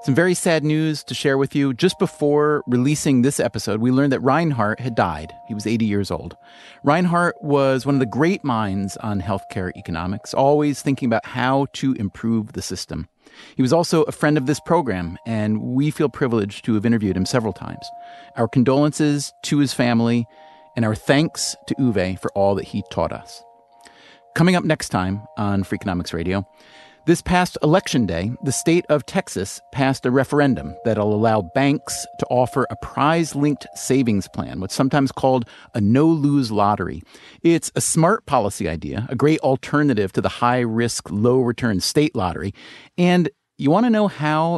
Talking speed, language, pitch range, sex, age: 175 wpm, English, 110-150 Hz, male, 30-49